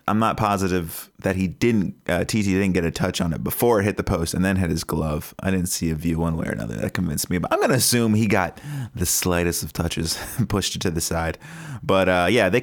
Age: 30-49